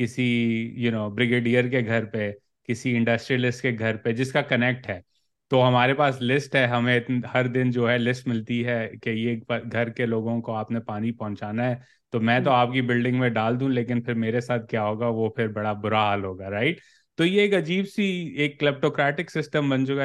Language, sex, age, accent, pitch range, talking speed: English, male, 30-49, Indian, 115-130 Hz, 140 wpm